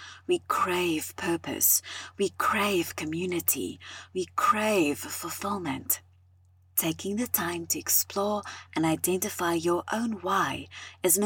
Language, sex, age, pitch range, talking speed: English, female, 30-49, 135-215 Hz, 110 wpm